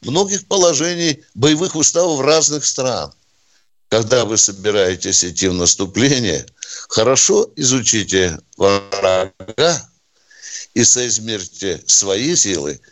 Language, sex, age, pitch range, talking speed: Russian, male, 60-79, 120-200 Hz, 90 wpm